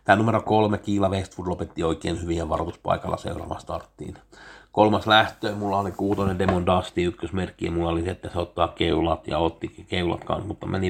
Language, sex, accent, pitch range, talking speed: Finnish, male, native, 90-105 Hz, 175 wpm